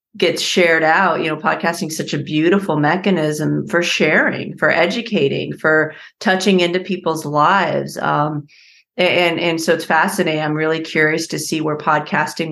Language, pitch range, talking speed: English, 155-185 Hz, 160 wpm